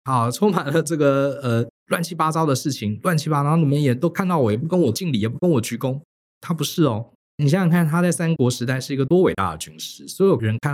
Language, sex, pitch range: Chinese, male, 105-170 Hz